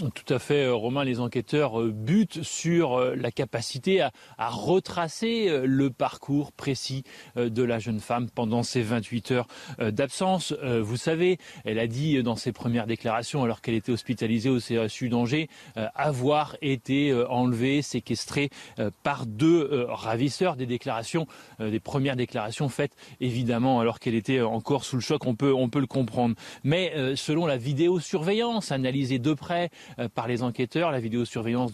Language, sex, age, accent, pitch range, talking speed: French, male, 30-49, French, 125-155 Hz, 170 wpm